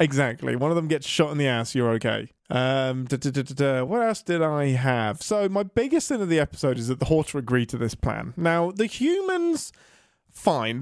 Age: 30-49